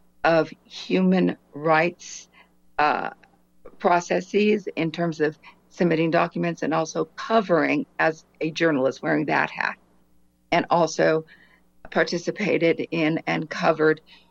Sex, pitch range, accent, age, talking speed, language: female, 145-175 Hz, American, 50-69, 105 wpm, English